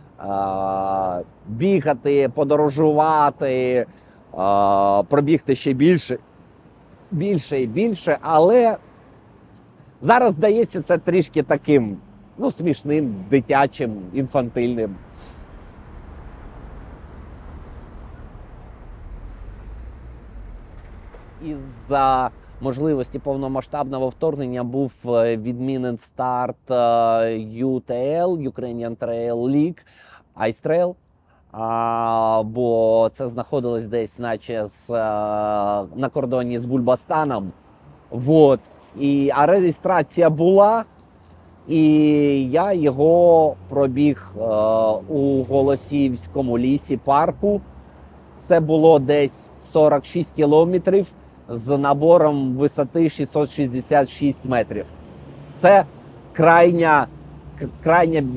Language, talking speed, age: Ukrainian, 70 wpm, 30-49